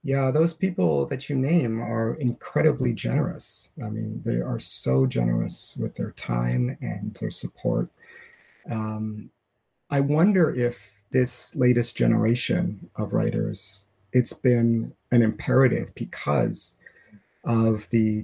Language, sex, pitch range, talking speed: English, male, 110-130 Hz, 120 wpm